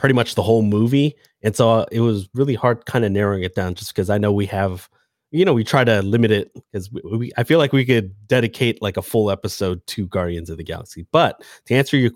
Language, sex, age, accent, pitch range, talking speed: English, male, 30-49, American, 105-130 Hz, 250 wpm